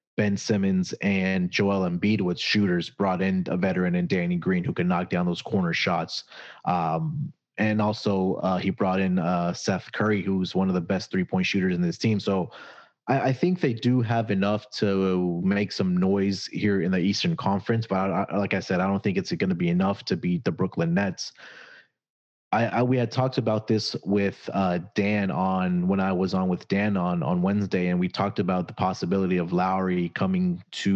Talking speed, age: 210 wpm, 30-49